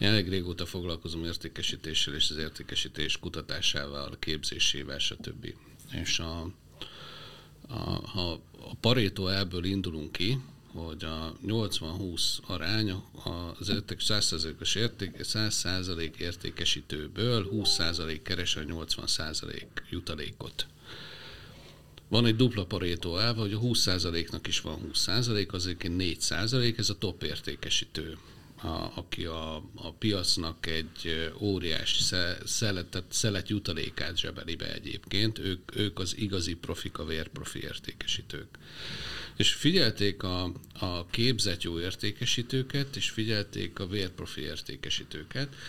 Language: Hungarian